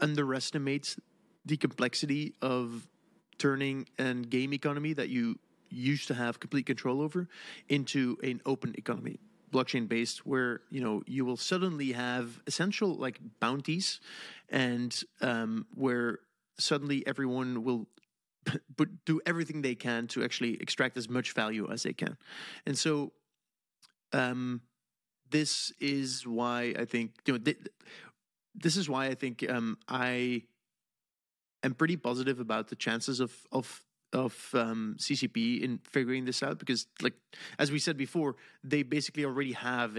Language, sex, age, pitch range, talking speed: English, male, 30-49, 120-145 Hz, 140 wpm